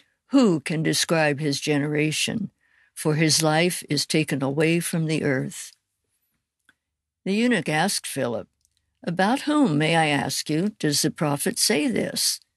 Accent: American